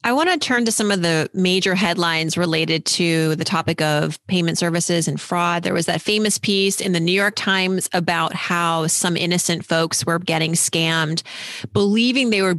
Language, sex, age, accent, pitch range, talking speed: English, female, 30-49, American, 165-205 Hz, 190 wpm